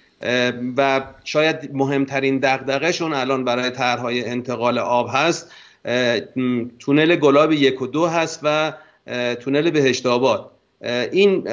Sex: male